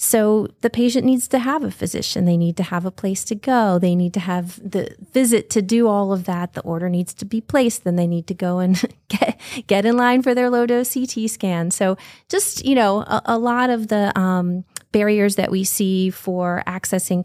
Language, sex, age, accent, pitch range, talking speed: English, female, 30-49, American, 185-245 Hz, 225 wpm